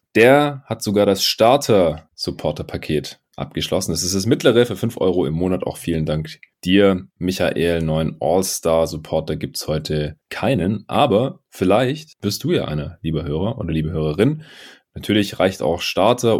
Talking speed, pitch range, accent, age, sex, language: 145 wpm, 80-105 Hz, German, 30-49, male, German